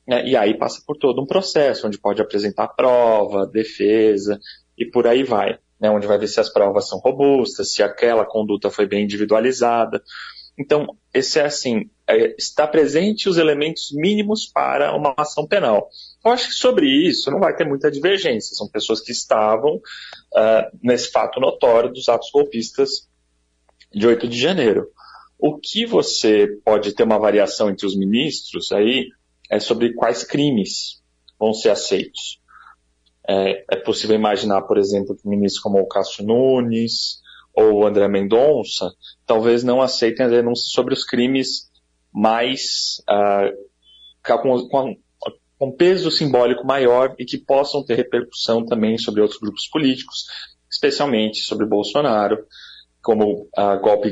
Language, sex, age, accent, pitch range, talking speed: Portuguese, male, 30-49, Brazilian, 105-135 Hz, 150 wpm